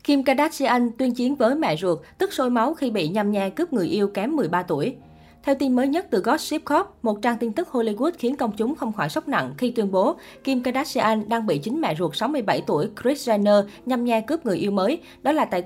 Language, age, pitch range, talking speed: Vietnamese, 20-39, 200-255 Hz, 240 wpm